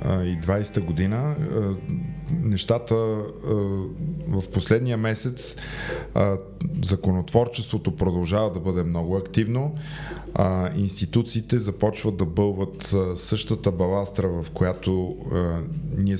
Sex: male